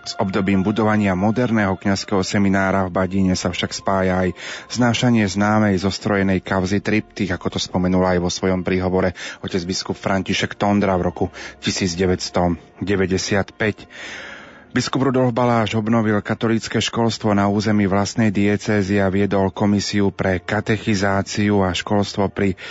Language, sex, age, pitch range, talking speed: Slovak, male, 30-49, 95-105 Hz, 130 wpm